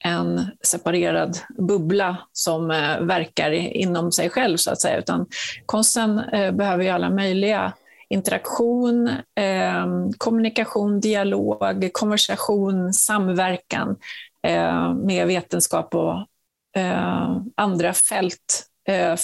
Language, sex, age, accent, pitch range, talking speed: Swedish, female, 30-49, native, 170-220 Hz, 105 wpm